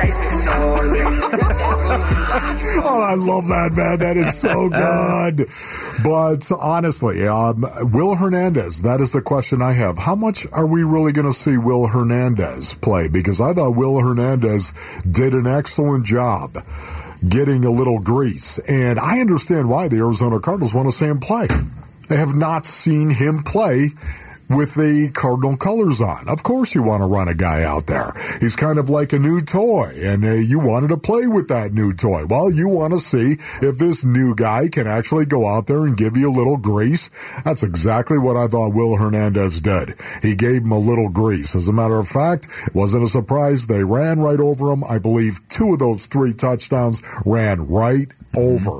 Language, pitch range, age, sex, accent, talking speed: English, 110-155 Hz, 50-69, male, American, 185 wpm